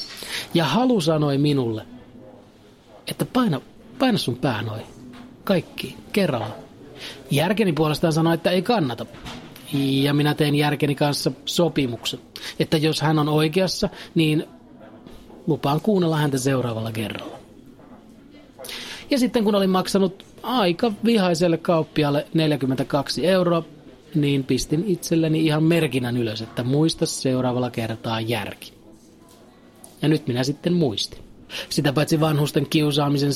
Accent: native